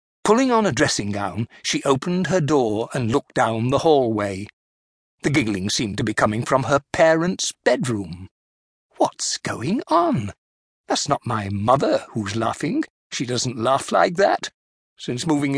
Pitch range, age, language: 115-185 Hz, 50-69, English